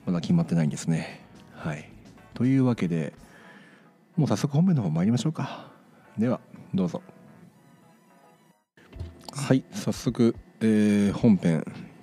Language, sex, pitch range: Japanese, male, 85-135 Hz